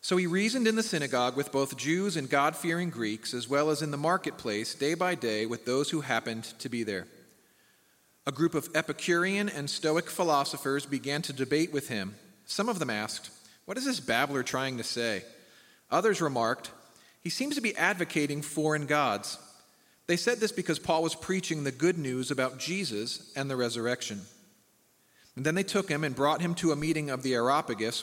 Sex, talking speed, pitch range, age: male, 190 wpm, 135-185 Hz, 40-59